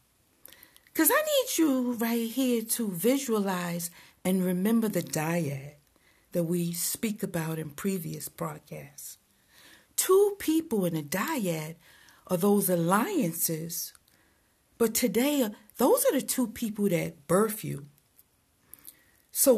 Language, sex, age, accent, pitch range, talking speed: English, female, 50-69, American, 170-235 Hz, 115 wpm